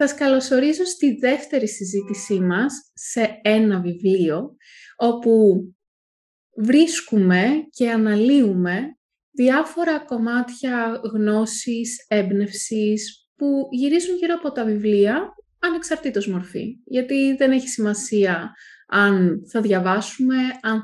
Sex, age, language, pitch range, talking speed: female, 20-39, Greek, 205-280 Hz, 95 wpm